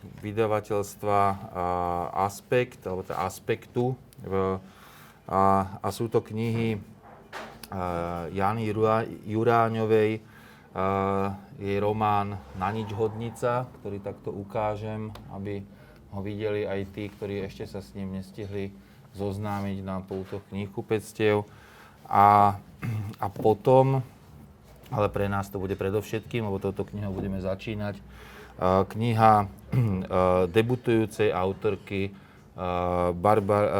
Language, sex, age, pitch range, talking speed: Slovak, male, 30-49, 95-105 Hz, 105 wpm